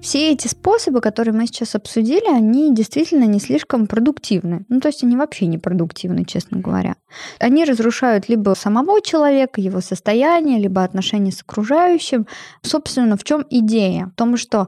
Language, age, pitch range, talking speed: Russian, 20-39, 205-265 Hz, 160 wpm